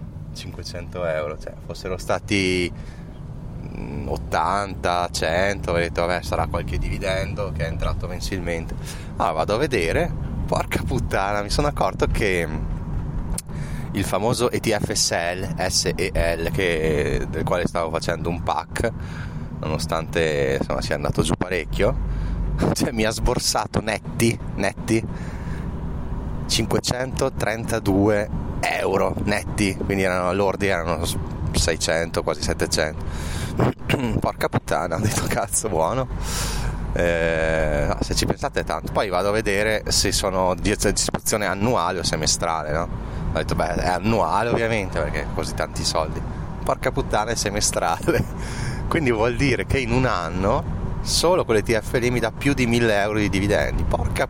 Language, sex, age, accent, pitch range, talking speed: Italian, male, 20-39, native, 85-105 Hz, 130 wpm